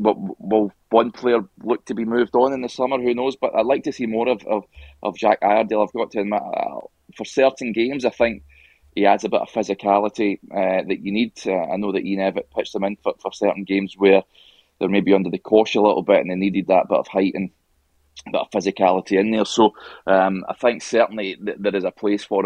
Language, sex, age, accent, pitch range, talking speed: English, male, 20-39, British, 95-110 Hz, 240 wpm